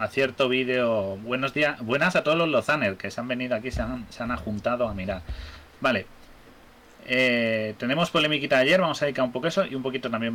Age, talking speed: 30-49, 220 wpm